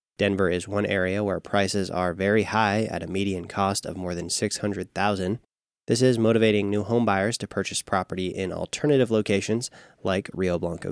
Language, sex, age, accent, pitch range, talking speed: English, male, 20-39, American, 95-110 Hz, 175 wpm